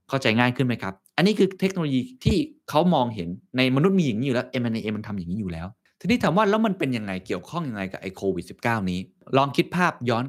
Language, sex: Thai, male